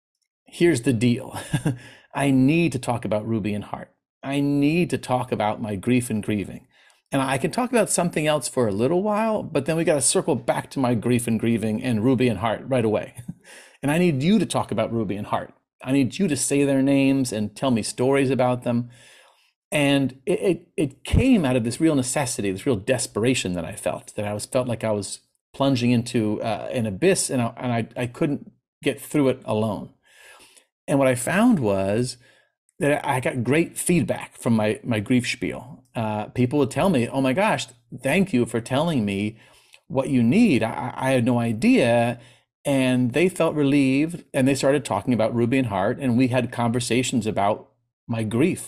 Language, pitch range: English, 115-140 Hz